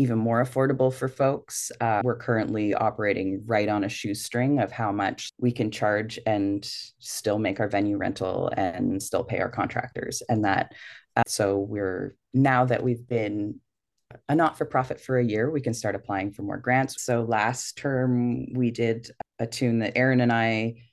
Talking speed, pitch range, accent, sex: 180 wpm, 110-130 Hz, American, female